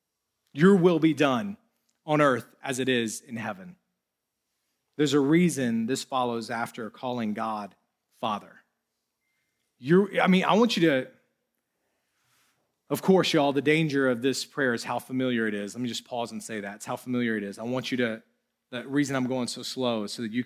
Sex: male